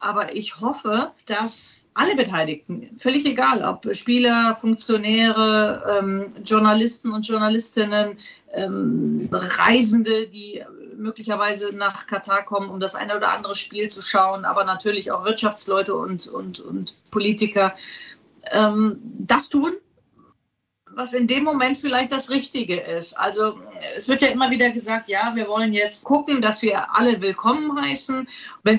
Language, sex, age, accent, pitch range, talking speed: German, female, 40-59, German, 200-240 Hz, 140 wpm